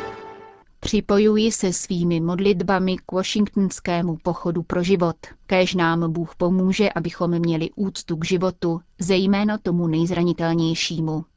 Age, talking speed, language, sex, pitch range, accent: 30-49, 110 wpm, Czech, female, 170-195 Hz, native